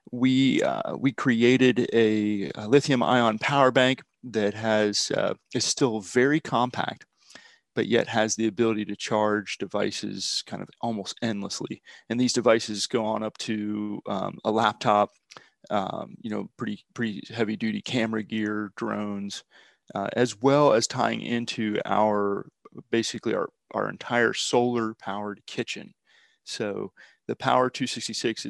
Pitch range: 105-125 Hz